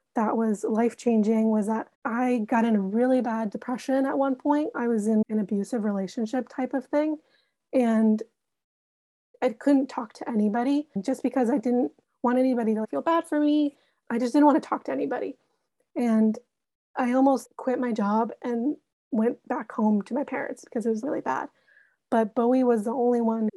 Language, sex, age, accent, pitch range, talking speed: English, female, 20-39, American, 225-265 Hz, 185 wpm